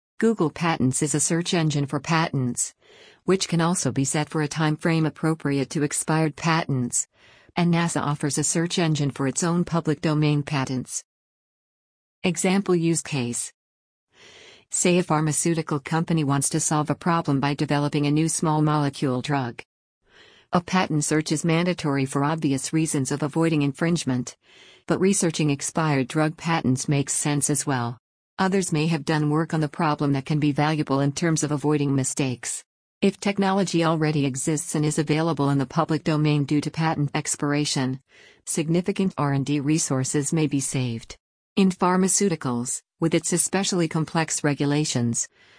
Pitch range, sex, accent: 140-165 Hz, female, American